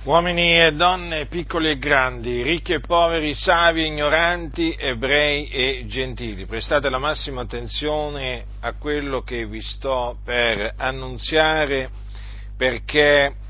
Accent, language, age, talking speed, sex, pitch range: native, Italian, 50-69, 120 wpm, male, 105-155 Hz